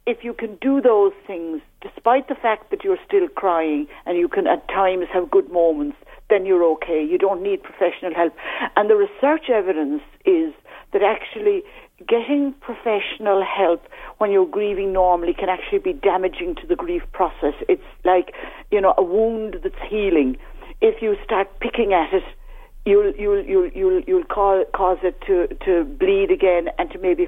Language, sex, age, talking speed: English, female, 60-79, 175 wpm